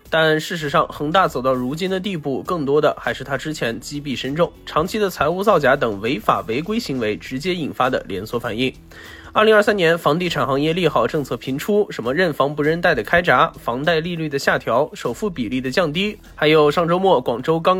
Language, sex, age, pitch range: Chinese, male, 20-39, 135-185 Hz